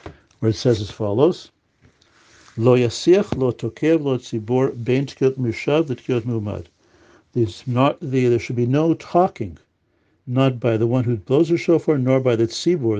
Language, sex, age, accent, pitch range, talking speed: English, male, 60-79, American, 115-135 Hz, 155 wpm